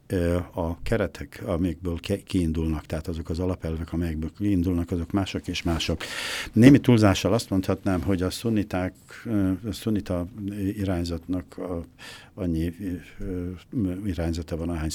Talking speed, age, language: 110 wpm, 60-79, Hungarian